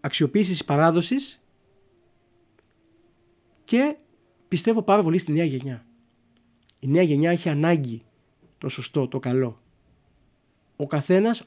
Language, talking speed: Greek, 105 wpm